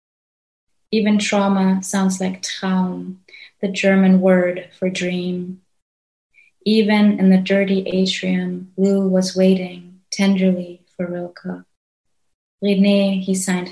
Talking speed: 105 wpm